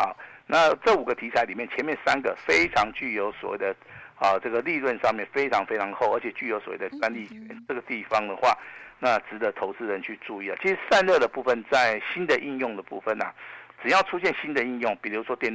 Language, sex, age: Chinese, male, 50-69